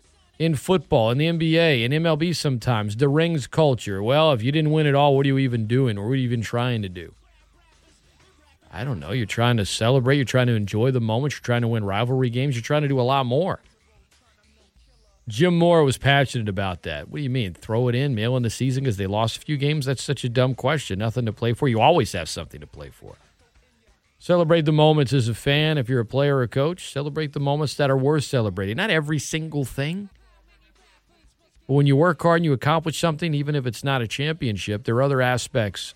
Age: 40-59